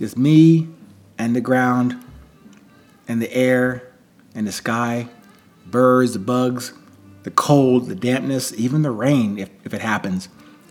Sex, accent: male, American